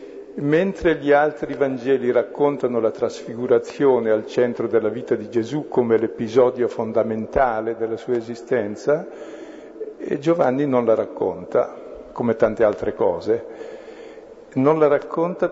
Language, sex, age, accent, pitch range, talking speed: Italian, male, 50-69, native, 125-165 Hz, 115 wpm